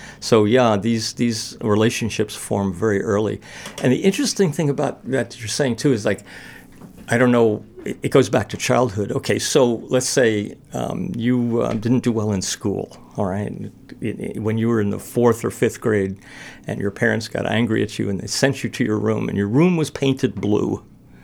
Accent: American